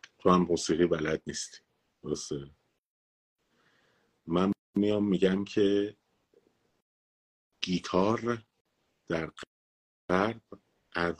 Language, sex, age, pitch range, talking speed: Persian, male, 50-69, 80-100 Hz, 75 wpm